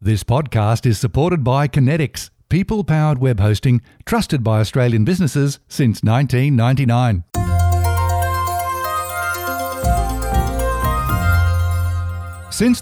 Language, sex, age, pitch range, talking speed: English, male, 60-79, 115-155 Hz, 75 wpm